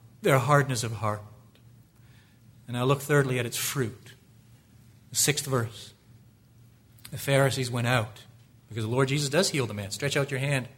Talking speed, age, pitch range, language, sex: 165 wpm, 40-59, 115-130 Hz, English, male